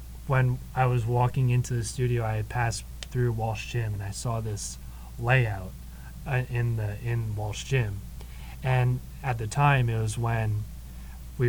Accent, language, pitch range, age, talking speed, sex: American, English, 100-125 Hz, 20-39, 165 wpm, male